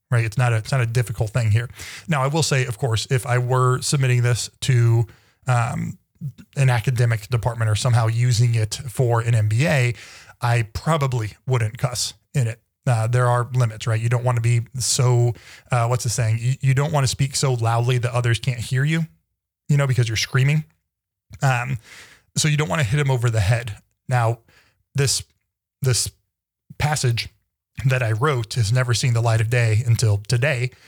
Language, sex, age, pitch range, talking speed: English, male, 20-39, 110-130 Hz, 190 wpm